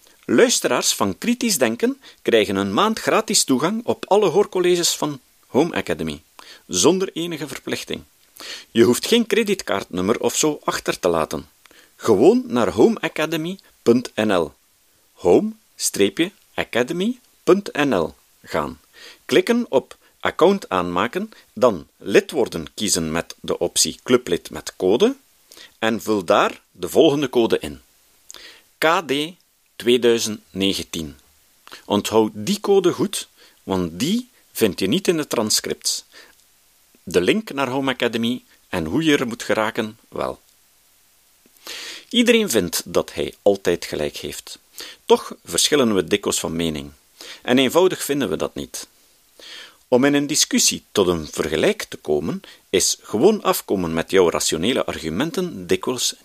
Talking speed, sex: 125 wpm, male